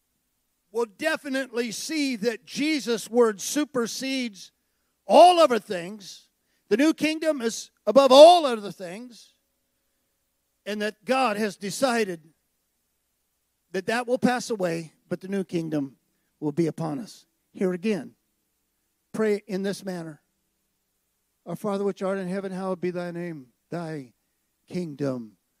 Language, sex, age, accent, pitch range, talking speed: English, male, 50-69, American, 170-245 Hz, 125 wpm